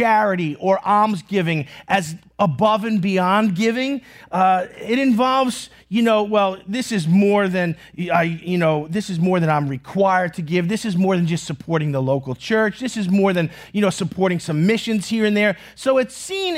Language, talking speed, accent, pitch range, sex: English, 190 wpm, American, 195-275 Hz, male